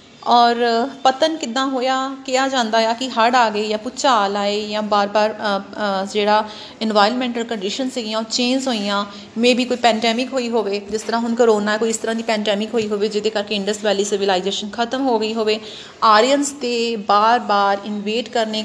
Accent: native